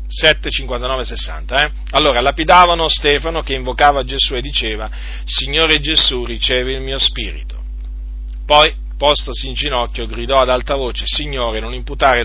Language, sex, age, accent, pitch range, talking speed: Italian, male, 40-59, native, 105-145 Hz, 135 wpm